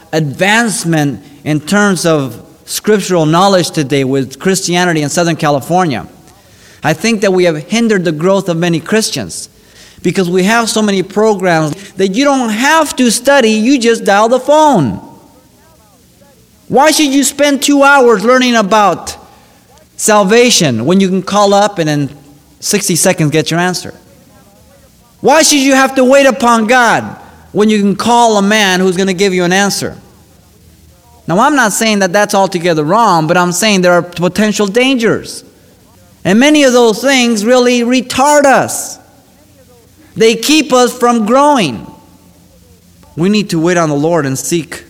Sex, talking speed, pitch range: male, 160 wpm, 140-225 Hz